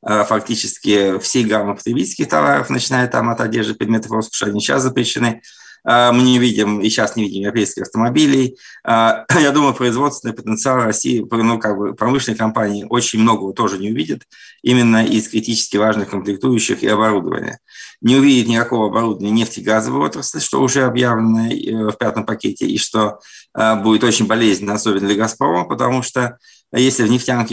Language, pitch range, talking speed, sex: Russian, 100-120 Hz, 155 wpm, male